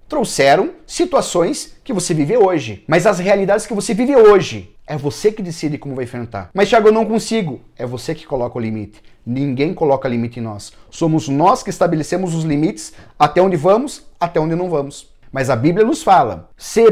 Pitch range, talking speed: 130-215 Hz, 195 wpm